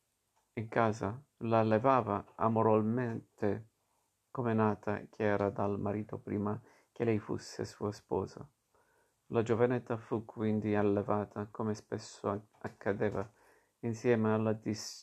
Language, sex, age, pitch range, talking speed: Italian, male, 50-69, 105-115 Hz, 110 wpm